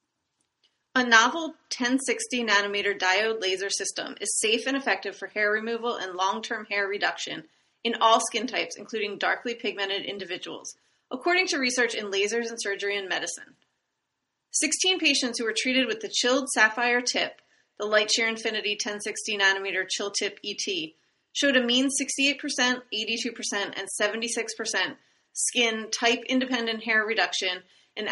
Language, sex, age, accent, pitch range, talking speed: English, female, 30-49, American, 200-245 Hz, 140 wpm